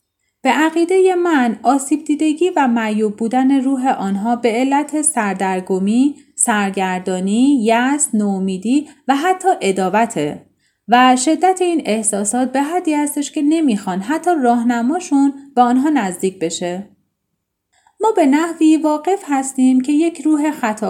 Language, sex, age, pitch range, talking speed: Persian, female, 30-49, 205-300 Hz, 125 wpm